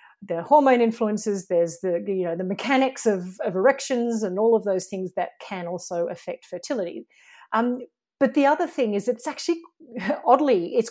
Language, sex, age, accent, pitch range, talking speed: English, female, 40-59, Australian, 180-230 Hz, 175 wpm